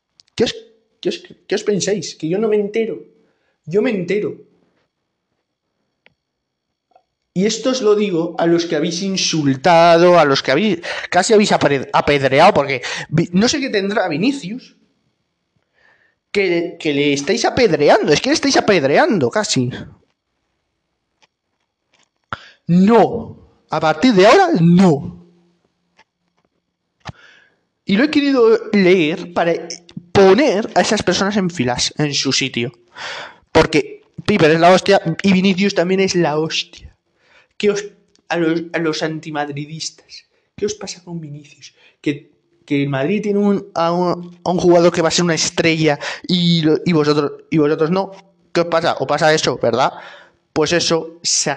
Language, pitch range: Spanish, 155-200 Hz